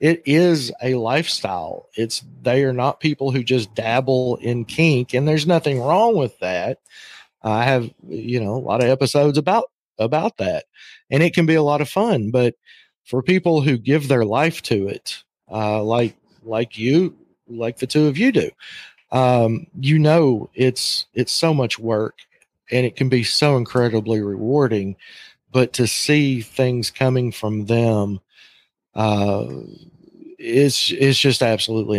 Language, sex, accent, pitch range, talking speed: English, male, American, 115-140 Hz, 160 wpm